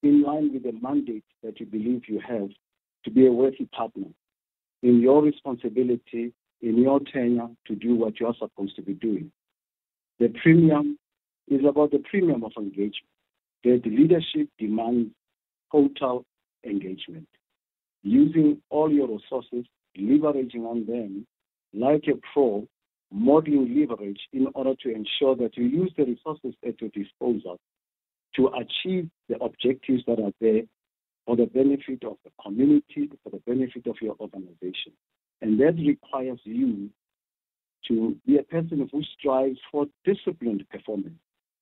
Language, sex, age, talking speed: English, male, 50-69, 145 wpm